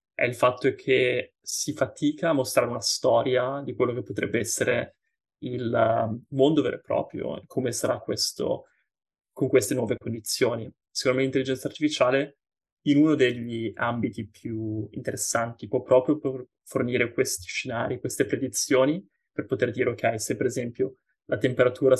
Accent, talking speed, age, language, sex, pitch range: native, 145 wpm, 20-39, Italian, male, 120-135 Hz